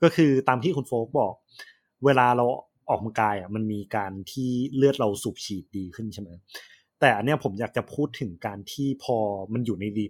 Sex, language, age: male, Thai, 20-39